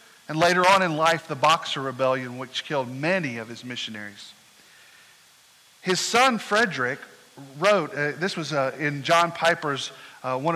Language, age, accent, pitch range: English, 40-59, American, 155-210 Hz